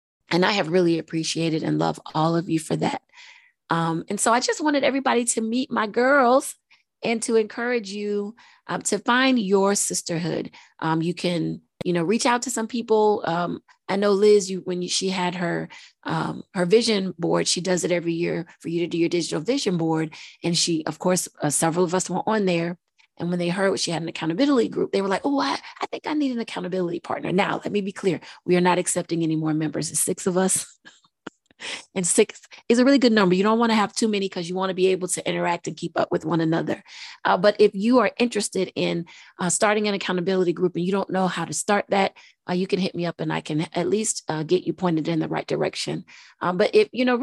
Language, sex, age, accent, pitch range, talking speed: English, female, 30-49, American, 170-220 Hz, 240 wpm